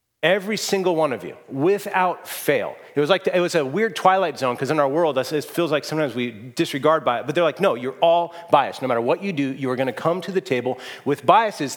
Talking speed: 250 wpm